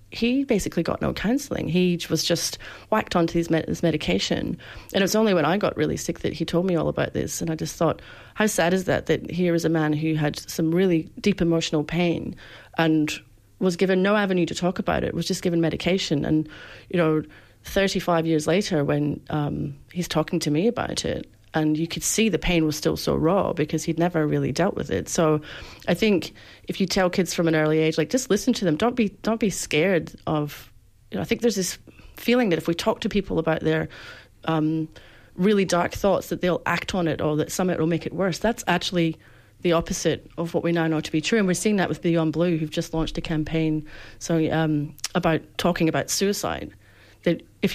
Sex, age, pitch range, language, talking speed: female, 30-49, 155-185 Hz, English, 225 wpm